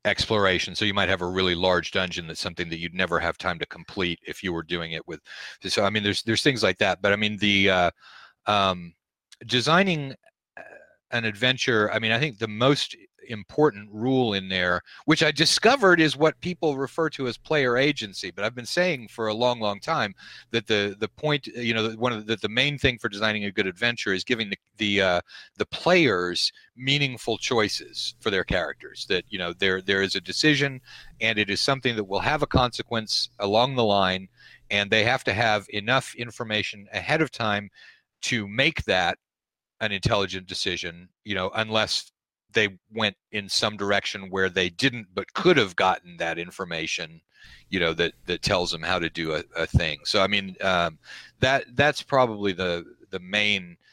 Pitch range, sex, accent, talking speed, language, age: 95-120 Hz, male, American, 195 wpm, English, 40-59